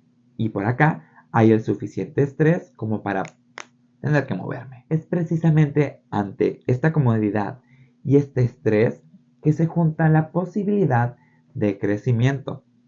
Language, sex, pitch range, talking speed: Spanish, male, 110-145 Hz, 125 wpm